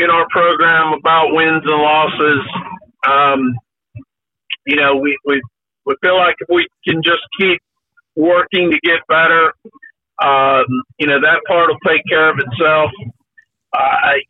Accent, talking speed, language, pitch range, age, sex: American, 145 wpm, English, 155-200 Hz, 50-69, male